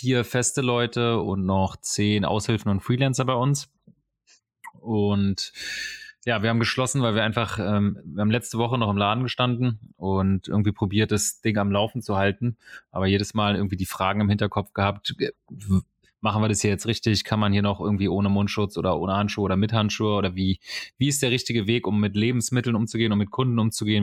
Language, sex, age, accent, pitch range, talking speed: German, male, 30-49, German, 100-115 Hz, 200 wpm